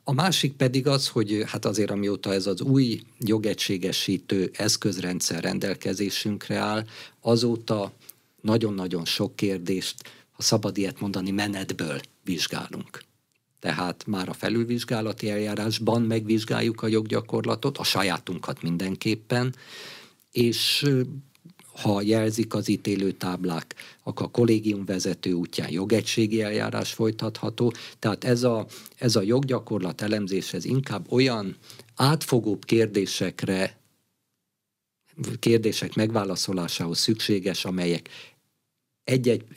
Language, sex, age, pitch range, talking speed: Hungarian, male, 50-69, 95-115 Hz, 100 wpm